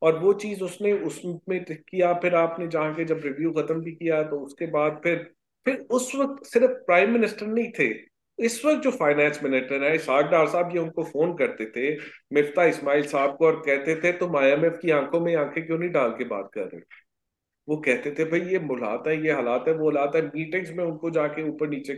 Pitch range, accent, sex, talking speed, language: 145-190 Hz, Indian, male, 210 wpm, English